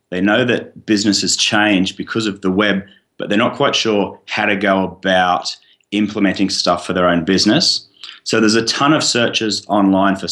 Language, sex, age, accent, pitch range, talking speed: English, male, 30-49, Australian, 90-105 Hz, 190 wpm